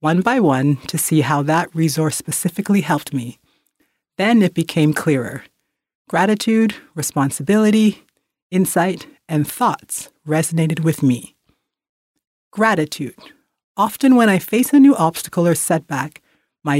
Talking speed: 120 wpm